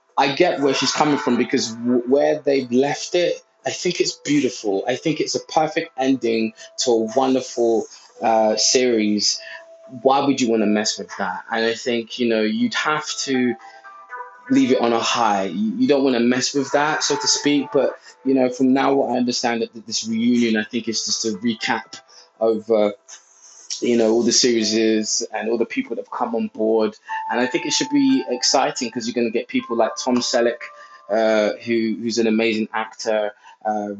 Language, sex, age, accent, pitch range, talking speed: English, male, 20-39, British, 110-140 Hz, 200 wpm